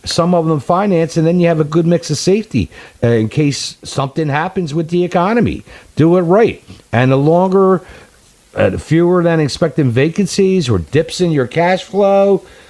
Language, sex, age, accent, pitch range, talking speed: English, male, 50-69, American, 145-190 Hz, 180 wpm